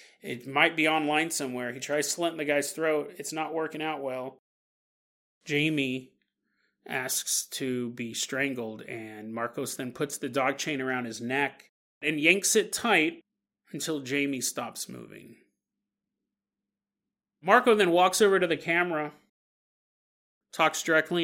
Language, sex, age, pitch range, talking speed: English, male, 30-49, 130-160 Hz, 135 wpm